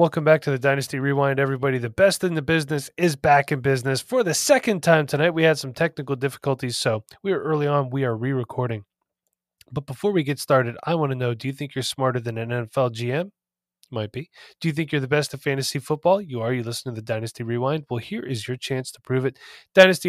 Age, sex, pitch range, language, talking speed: 20-39, male, 125-150 Hz, English, 240 wpm